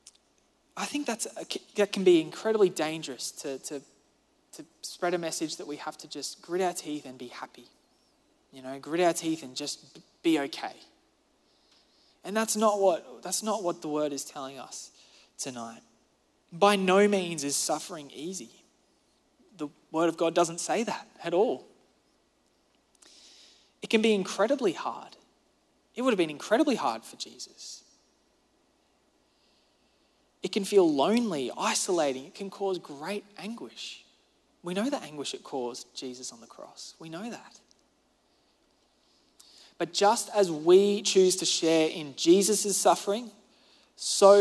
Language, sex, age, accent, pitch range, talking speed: English, male, 20-39, Australian, 145-200 Hz, 145 wpm